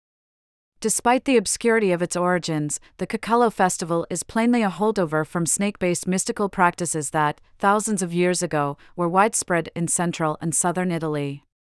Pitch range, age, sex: 165-200 Hz, 40-59, female